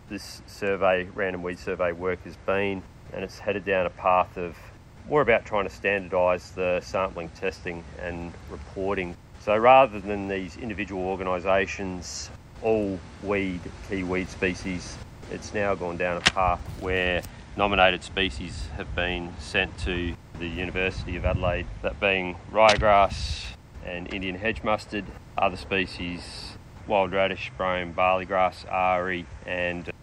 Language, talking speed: English, 140 wpm